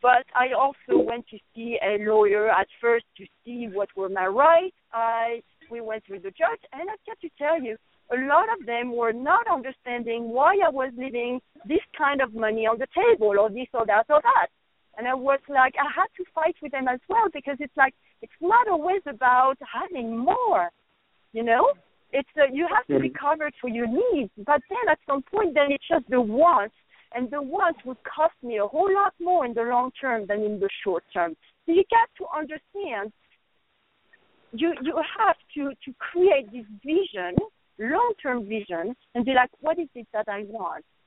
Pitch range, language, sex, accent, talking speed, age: 230-320 Hz, English, female, French, 200 wpm, 50-69